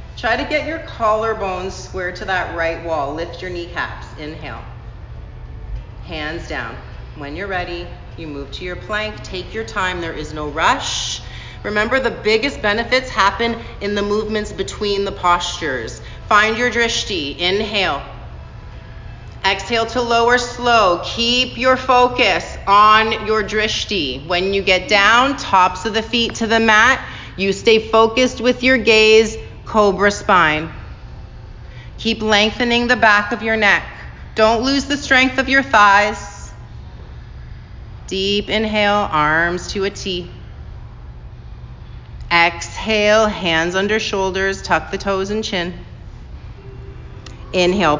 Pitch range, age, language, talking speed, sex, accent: 175-225 Hz, 30-49, English, 130 wpm, female, American